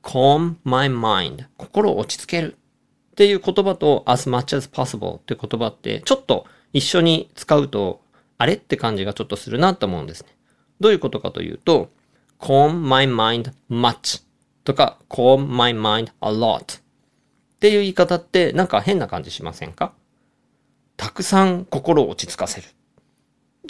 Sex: male